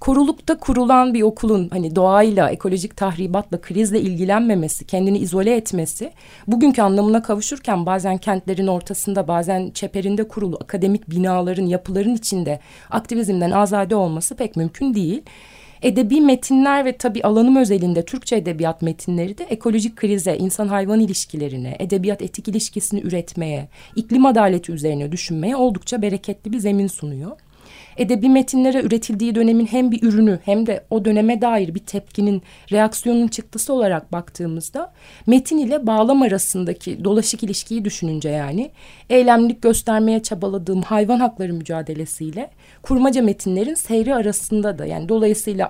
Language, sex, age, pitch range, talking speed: Turkish, female, 30-49, 185-230 Hz, 130 wpm